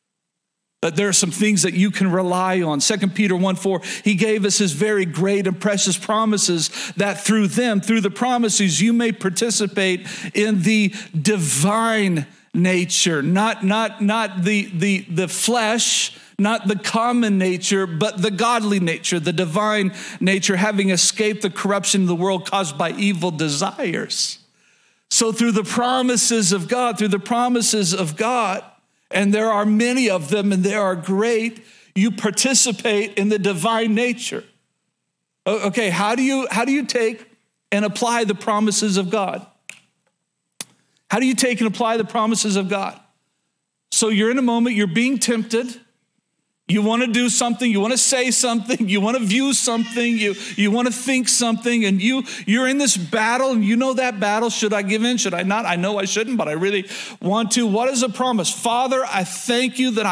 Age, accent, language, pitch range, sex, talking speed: 50-69, American, English, 195-235 Hz, male, 180 wpm